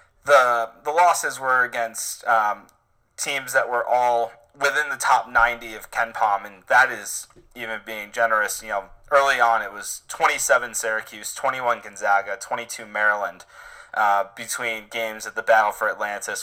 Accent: American